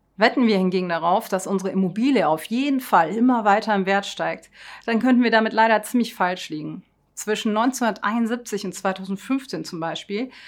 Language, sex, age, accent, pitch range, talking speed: German, female, 30-49, German, 190-230 Hz, 165 wpm